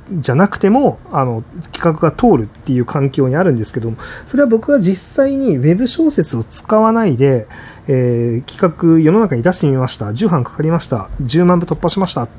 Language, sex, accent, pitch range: Japanese, male, native, 125-200 Hz